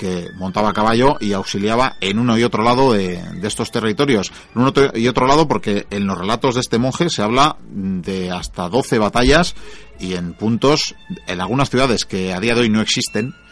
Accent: Spanish